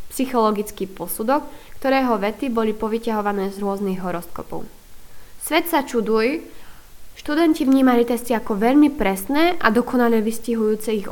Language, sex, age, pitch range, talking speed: Slovak, female, 20-39, 210-265 Hz, 120 wpm